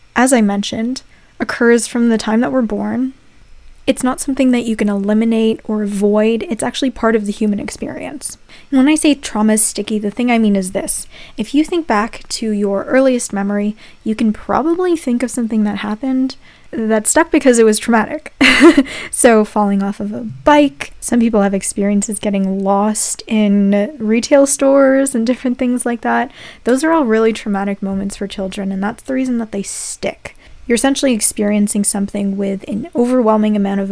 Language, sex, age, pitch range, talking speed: English, female, 10-29, 205-250 Hz, 185 wpm